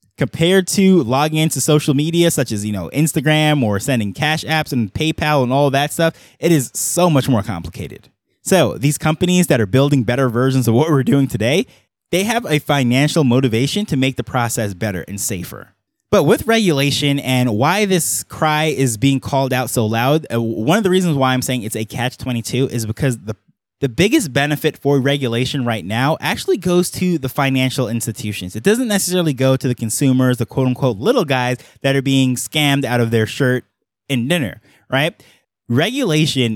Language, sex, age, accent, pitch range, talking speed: English, male, 20-39, American, 125-155 Hz, 190 wpm